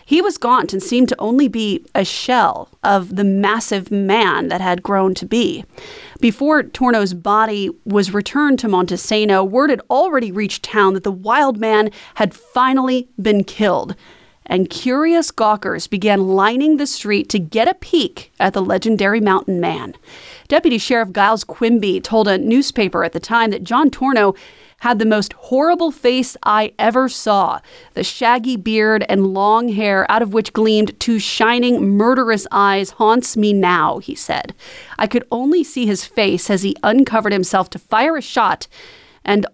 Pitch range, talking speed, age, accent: 205-265 Hz, 165 wpm, 30-49, American